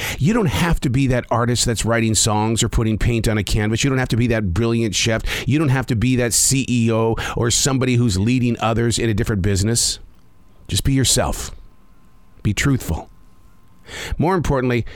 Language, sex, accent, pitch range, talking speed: English, male, American, 100-135 Hz, 190 wpm